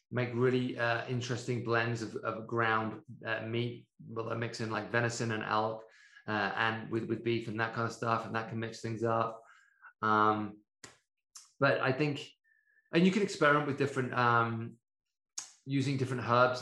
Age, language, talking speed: 20-39, English, 175 wpm